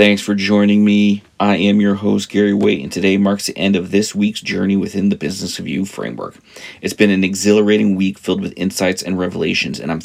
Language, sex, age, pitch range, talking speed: English, male, 40-59, 95-110 Hz, 215 wpm